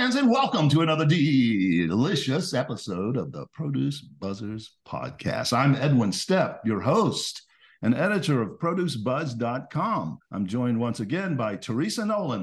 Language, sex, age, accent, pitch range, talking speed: English, male, 50-69, American, 110-165 Hz, 130 wpm